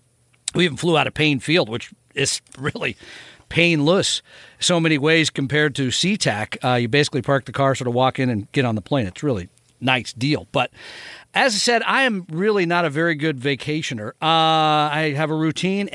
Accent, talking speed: American, 200 wpm